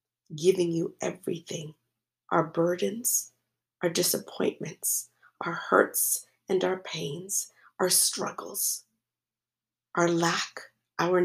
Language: English